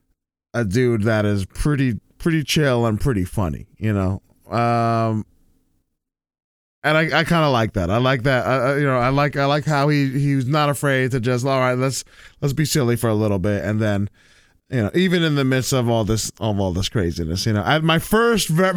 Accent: American